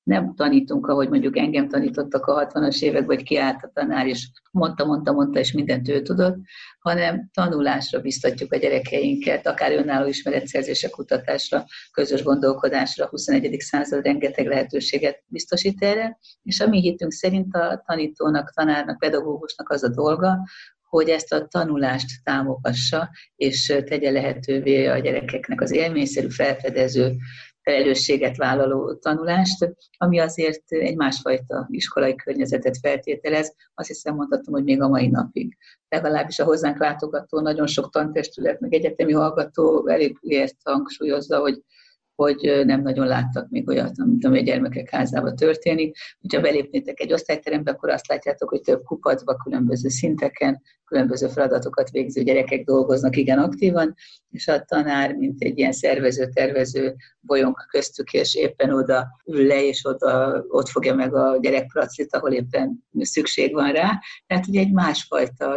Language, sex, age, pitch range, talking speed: Hungarian, female, 50-69, 135-195 Hz, 145 wpm